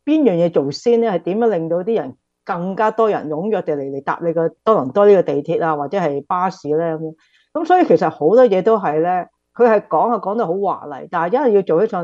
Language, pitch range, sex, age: Chinese, 155-205 Hz, female, 50-69